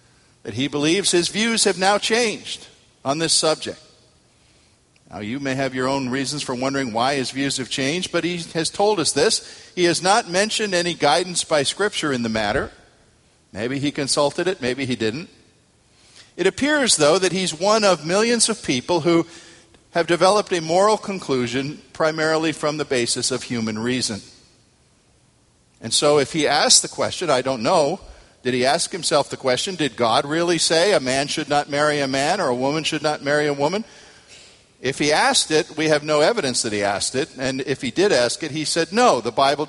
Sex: male